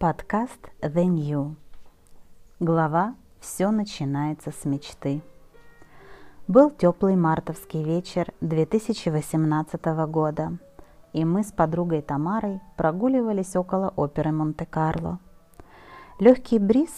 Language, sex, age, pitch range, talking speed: Russian, female, 30-49, 155-185 Hz, 90 wpm